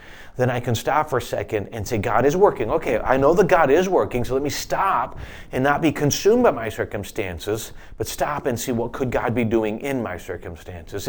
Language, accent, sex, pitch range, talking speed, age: English, American, male, 115-145 Hz, 225 wpm, 30-49